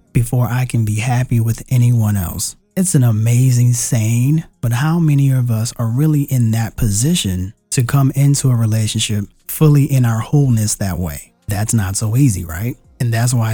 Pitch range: 105-130 Hz